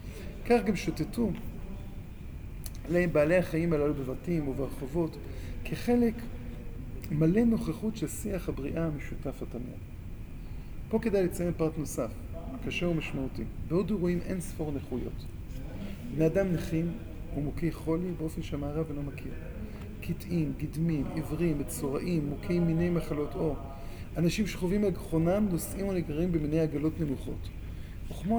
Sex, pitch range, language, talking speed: male, 120-175 Hz, Hebrew, 110 wpm